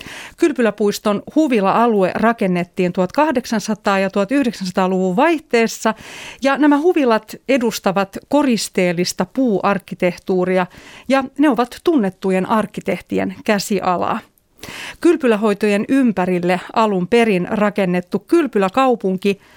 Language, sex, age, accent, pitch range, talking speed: Finnish, female, 40-59, native, 190-255 Hz, 75 wpm